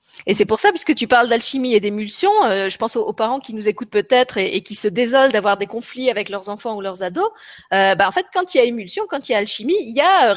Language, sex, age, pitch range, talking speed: French, female, 20-39, 190-265 Hz, 300 wpm